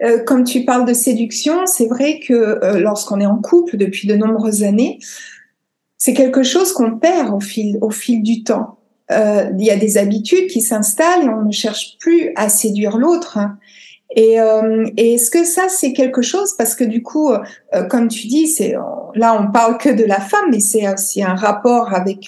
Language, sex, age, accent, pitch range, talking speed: French, female, 60-79, French, 210-275 Hz, 210 wpm